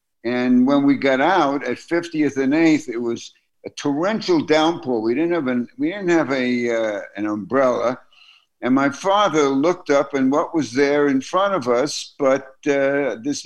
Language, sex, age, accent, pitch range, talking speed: English, male, 60-79, American, 130-210 Hz, 160 wpm